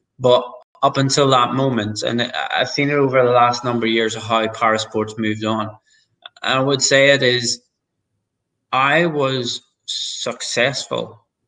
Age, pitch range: 20-39, 115-130 Hz